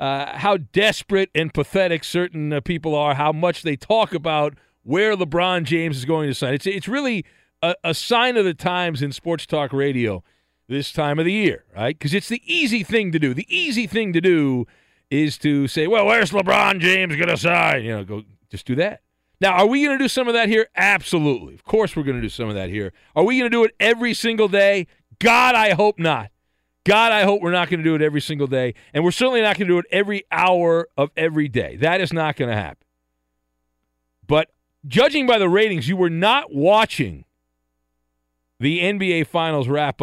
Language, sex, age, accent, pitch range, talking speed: English, male, 40-59, American, 125-190 Hz, 220 wpm